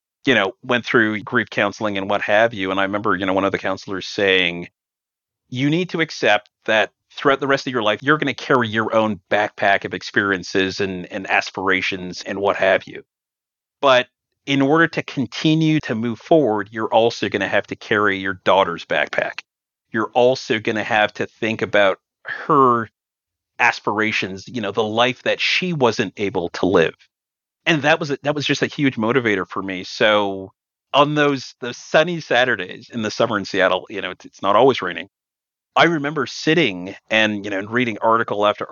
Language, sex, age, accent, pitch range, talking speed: English, male, 40-59, American, 100-140 Hz, 190 wpm